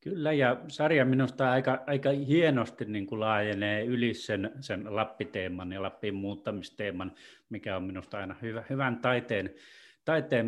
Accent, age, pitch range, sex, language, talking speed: native, 30-49, 100-130 Hz, male, Finnish, 145 wpm